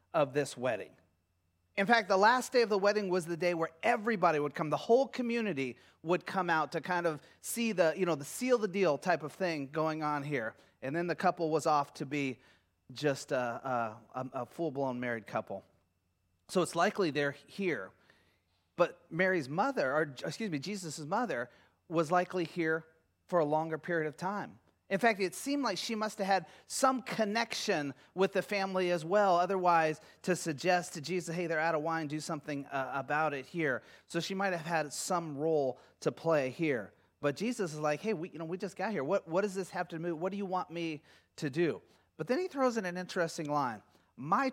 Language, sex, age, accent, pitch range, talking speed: English, male, 30-49, American, 150-195 Hz, 205 wpm